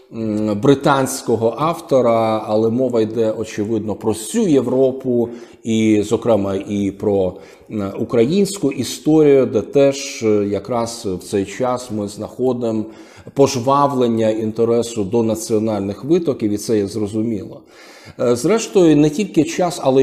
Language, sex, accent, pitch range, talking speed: Ukrainian, male, native, 110-140 Hz, 110 wpm